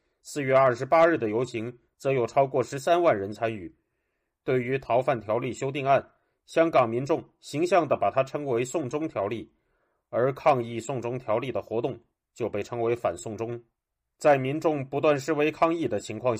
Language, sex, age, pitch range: Chinese, male, 30-49, 120-150 Hz